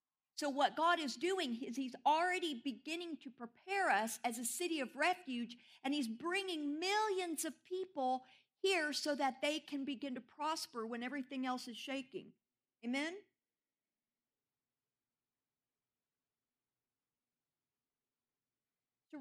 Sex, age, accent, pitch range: female, 50-69, American, 230-290 Hz